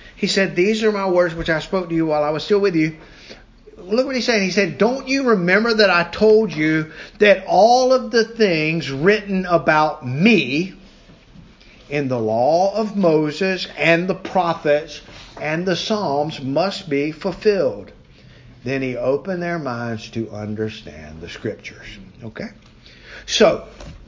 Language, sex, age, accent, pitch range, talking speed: English, male, 50-69, American, 135-195 Hz, 155 wpm